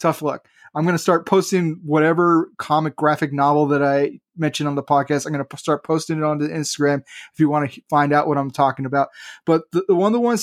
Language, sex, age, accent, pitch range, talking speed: English, male, 20-39, American, 145-175 Hz, 255 wpm